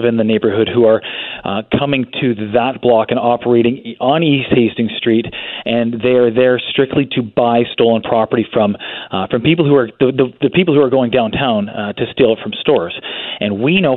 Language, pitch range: English, 110-125 Hz